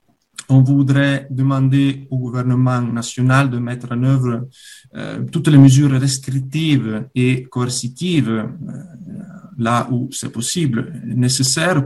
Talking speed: 115 wpm